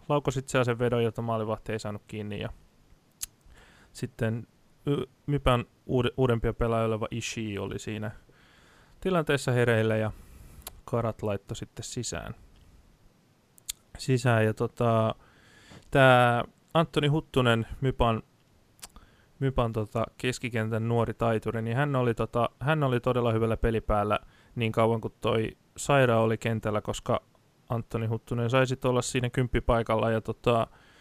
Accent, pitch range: native, 110-130 Hz